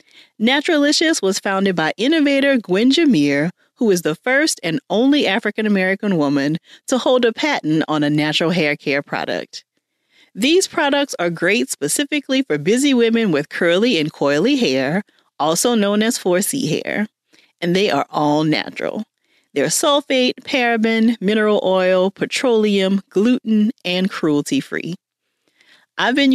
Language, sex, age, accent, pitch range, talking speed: English, female, 40-59, American, 170-250 Hz, 135 wpm